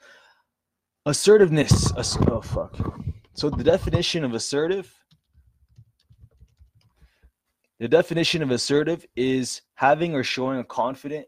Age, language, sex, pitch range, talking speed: 20-39, English, male, 110-140 Hz, 100 wpm